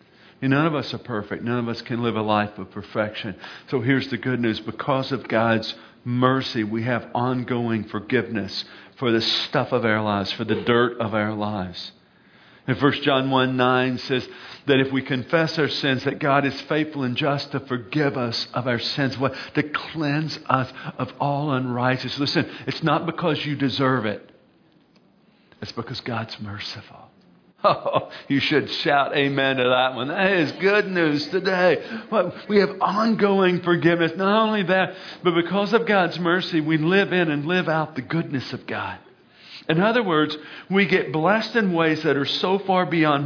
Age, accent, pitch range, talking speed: 50-69, American, 120-160 Hz, 180 wpm